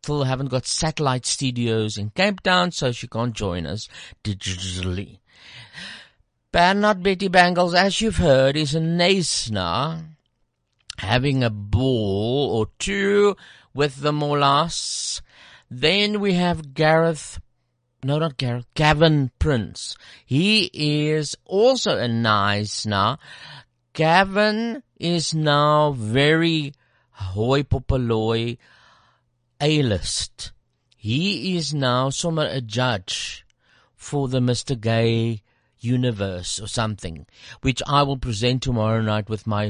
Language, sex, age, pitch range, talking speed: English, male, 50-69, 110-155 Hz, 110 wpm